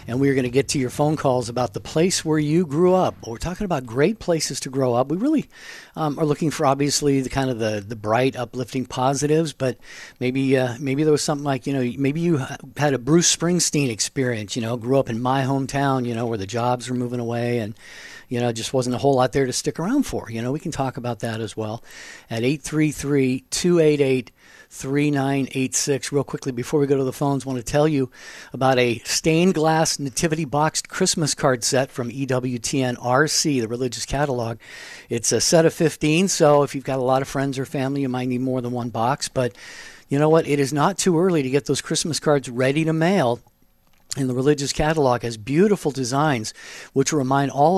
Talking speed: 220 wpm